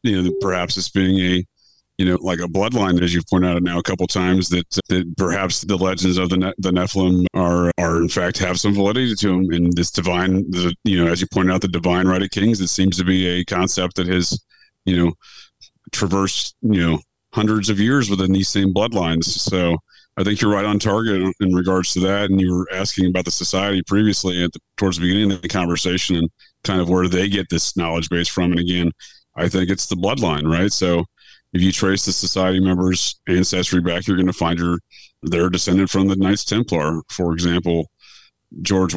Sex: male